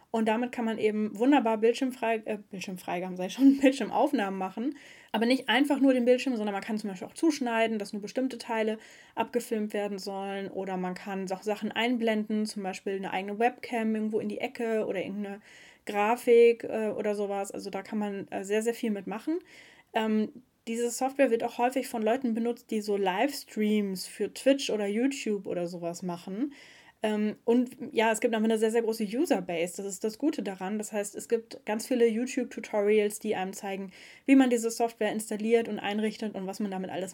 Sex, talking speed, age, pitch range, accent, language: female, 185 wpm, 10-29, 200-235 Hz, German, German